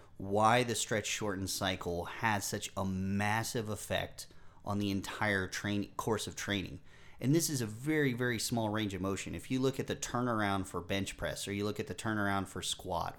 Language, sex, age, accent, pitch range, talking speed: English, male, 30-49, American, 90-115 Hz, 195 wpm